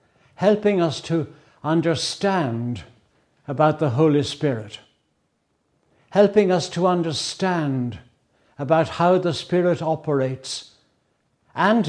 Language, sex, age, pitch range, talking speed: English, male, 60-79, 130-170 Hz, 90 wpm